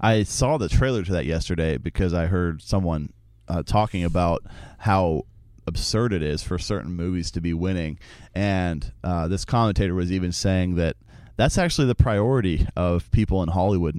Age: 30-49